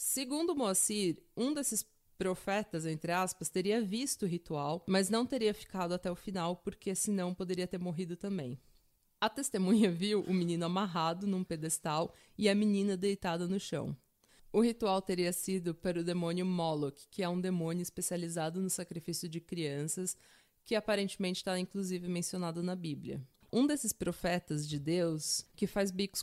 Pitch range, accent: 170-205 Hz, Brazilian